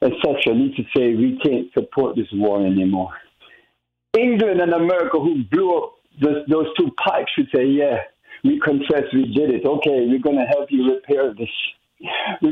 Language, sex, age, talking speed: English, male, 60-79, 175 wpm